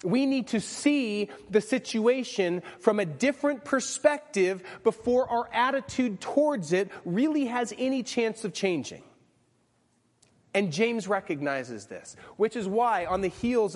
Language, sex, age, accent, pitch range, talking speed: English, male, 30-49, American, 175-225 Hz, 135 wpm